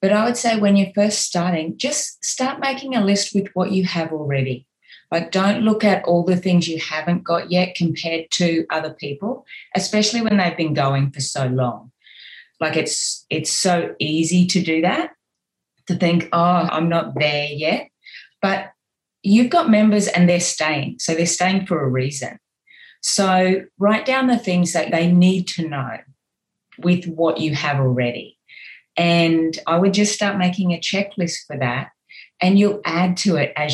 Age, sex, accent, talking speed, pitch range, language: 30-49, female, Australian, 180 wpm, 140-190 Hz, English